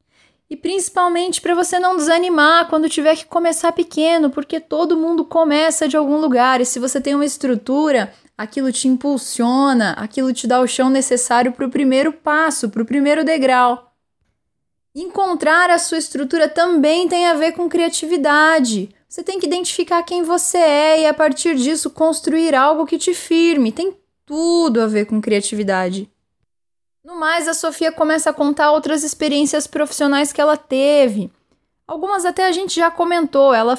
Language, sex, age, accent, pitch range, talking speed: Portuguese, female, 10-29, Brazilian, 255-335 Hz, 165 wpm